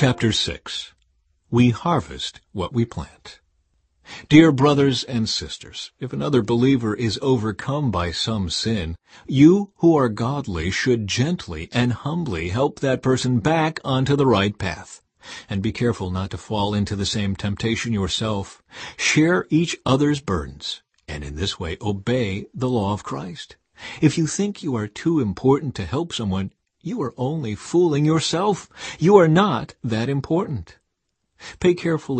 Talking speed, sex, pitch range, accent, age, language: 150 wpm, male, 95-145 Hz, American, 50-69, English